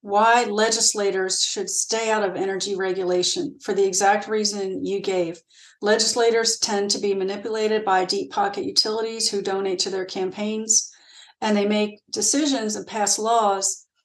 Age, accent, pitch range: 40-59, American, 195-230 Hz